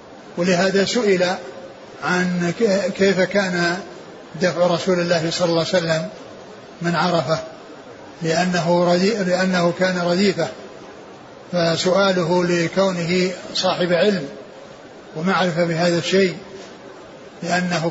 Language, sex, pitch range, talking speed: Arabic, male, 175-195 Hz, 85 wpm